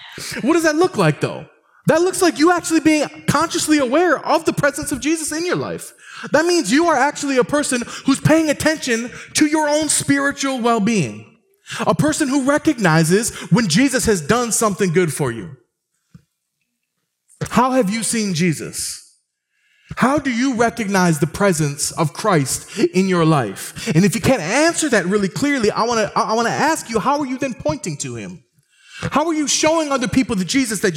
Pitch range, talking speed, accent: 165-270 Hz, 190 wpm, American